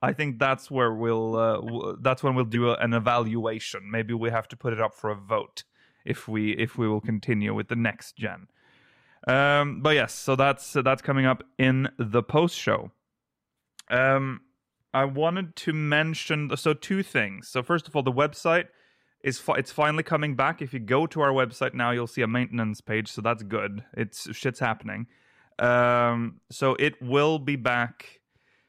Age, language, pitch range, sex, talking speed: 30-49, English, 115-145 Hz, male, 190 wpm